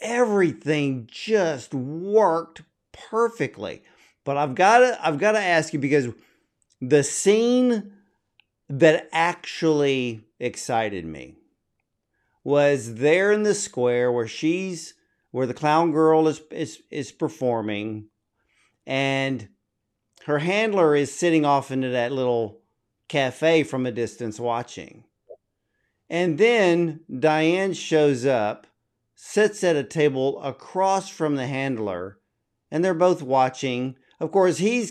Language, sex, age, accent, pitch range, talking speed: English, male, 50-69, American, 120-160 Hz, 115 wpm